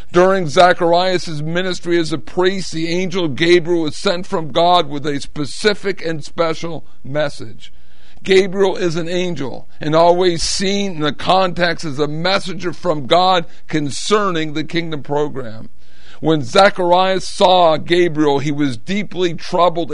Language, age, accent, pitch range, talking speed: English, 50-69, American, 145-185 Hz, 140 wpm